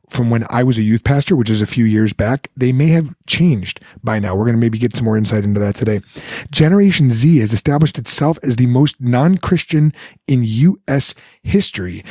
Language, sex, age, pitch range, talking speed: English, male, 30-49, 115-160 Hz, 210 wpm